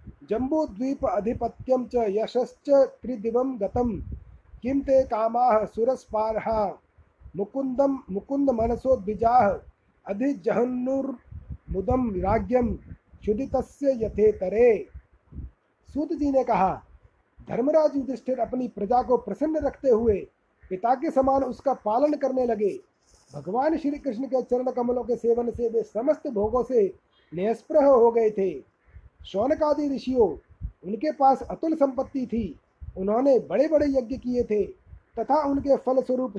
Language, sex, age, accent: Hindi, male, 30-49, native